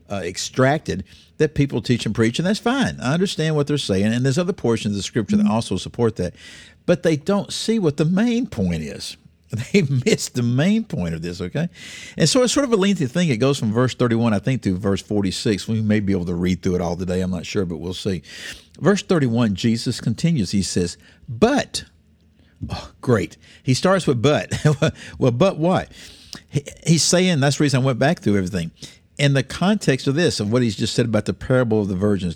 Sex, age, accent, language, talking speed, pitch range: male, 50-69, American, English, 220 wpm, 100-150 Hz